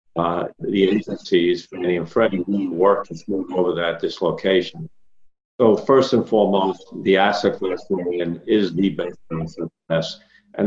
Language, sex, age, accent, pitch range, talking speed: English, male, 50-69, American, 90-115 Hz, 145 wpm